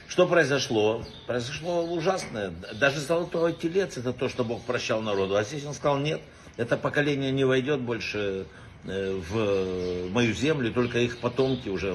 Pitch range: 105-145 Hz